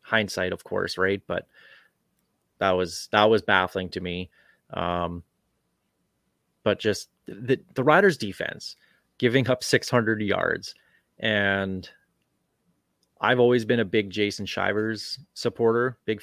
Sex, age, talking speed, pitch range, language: male, 30-49, 125 wpm, 95-125 Hz, English